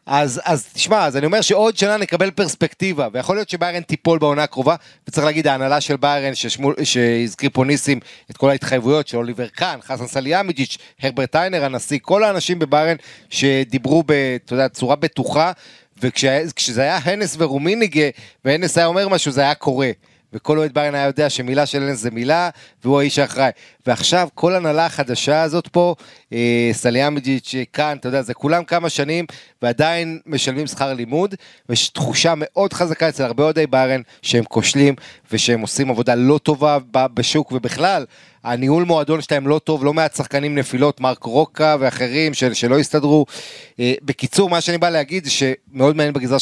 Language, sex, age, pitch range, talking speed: Hebrew, male, 30-49, 130-155 Hz, 165 wpm